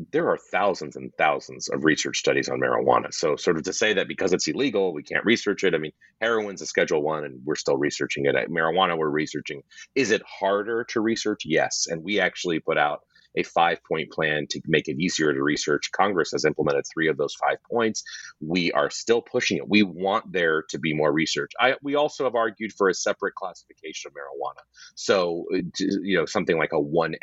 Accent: American